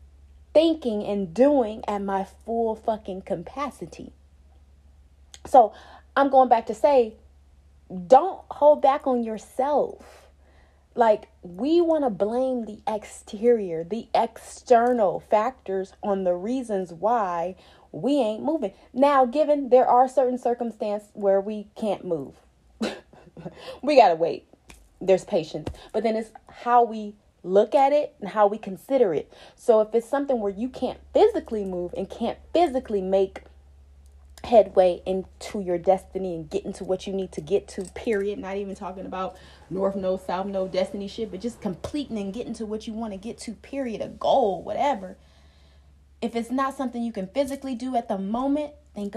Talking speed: 160 wpm